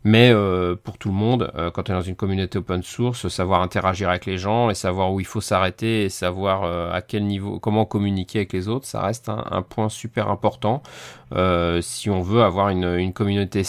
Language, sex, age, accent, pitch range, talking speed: French, male, 30-49, French, 95-115 Hz, 230 wpm